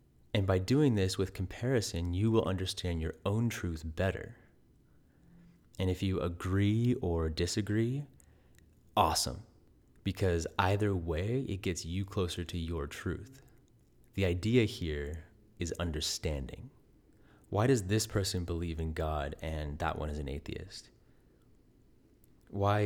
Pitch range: 85-105 Hz